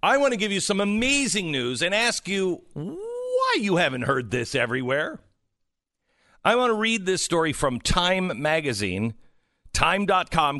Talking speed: 155 wpm